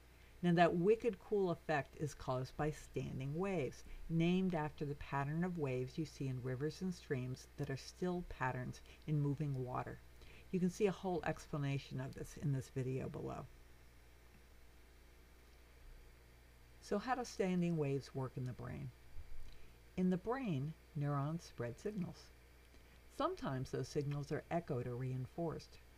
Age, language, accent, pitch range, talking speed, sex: 60-79, English, American, 120-165 Hz, 145 wpm, female